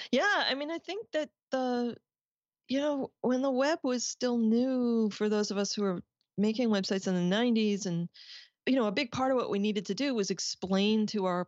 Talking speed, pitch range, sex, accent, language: 220 wpm, 160-225 Hz, female, American, English